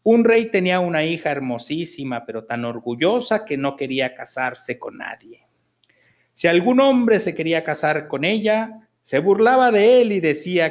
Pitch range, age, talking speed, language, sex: 145-230 Hz, 50-69, 165 wpm, Spanish, male